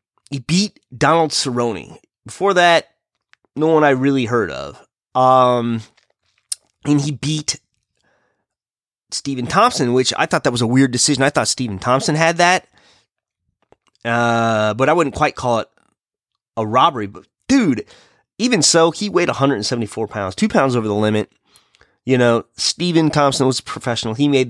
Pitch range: 115-145 Hz